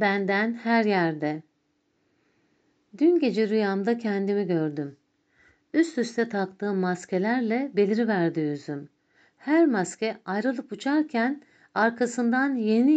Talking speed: 95 wpm